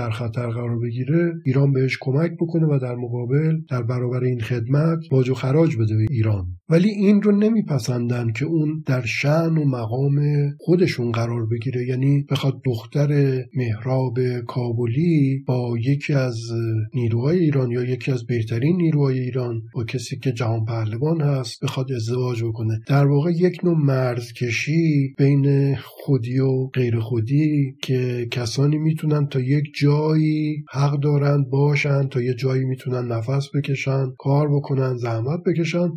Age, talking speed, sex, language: 50-69, 145 wpm, male, Persian